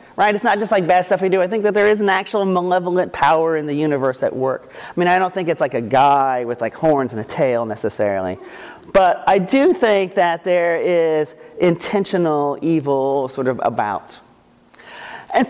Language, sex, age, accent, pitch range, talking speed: English, male, 40-59, American, 140-210 Hz, 200 wpm